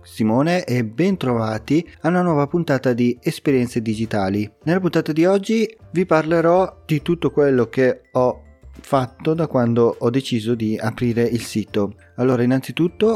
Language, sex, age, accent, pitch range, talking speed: Italian, male, 30-49, native, 110-135 Hz, 145 wpm